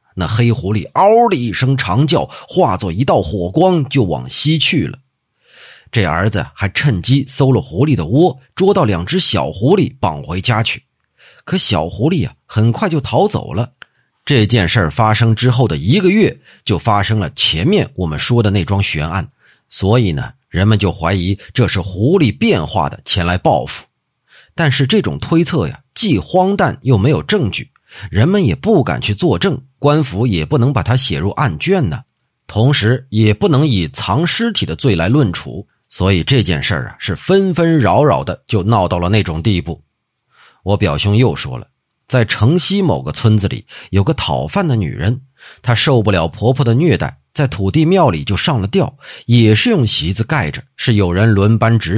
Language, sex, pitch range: Chinese, male, 105-145 Hz